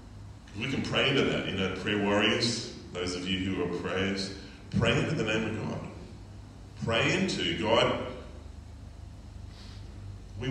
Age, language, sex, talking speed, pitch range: 40-59, English, male, 145 wpm, 95-105 Hz